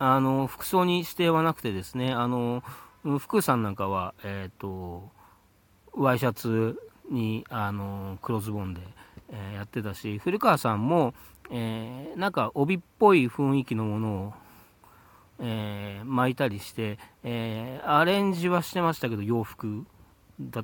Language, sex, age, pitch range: Japanese, male, 40-59, 105-155 Hz